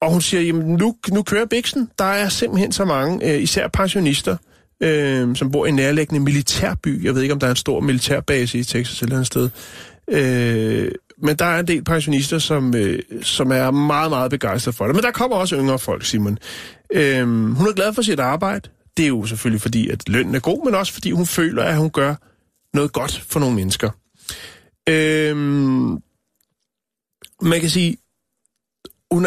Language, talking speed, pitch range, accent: Danish, 195 wpm, 125-170 Hz, native